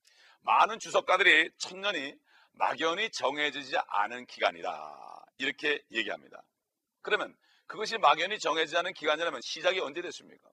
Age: 40-59